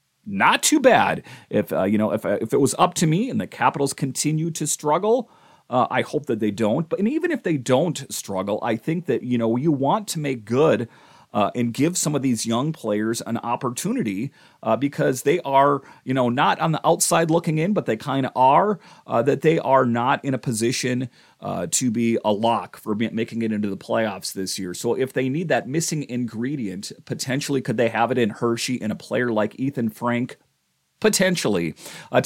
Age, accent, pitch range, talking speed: 30-49, American, 110-150 Hz, 210 wpm